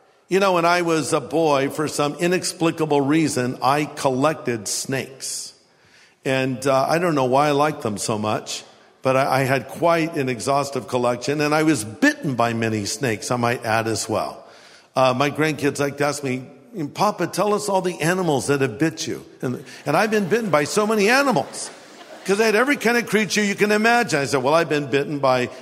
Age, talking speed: 50-69, 205 wpm